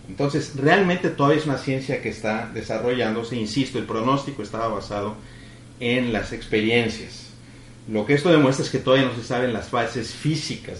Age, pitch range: 40-59, 110-135 Hz